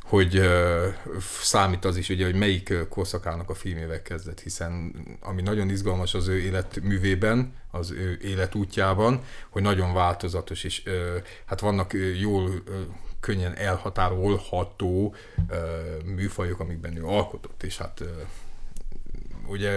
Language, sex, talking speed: Hungarian, male, 130 wpm